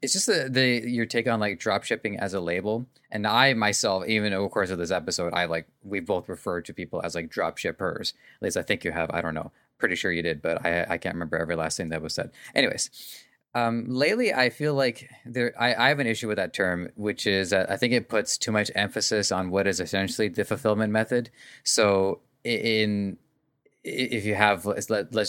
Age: 20-39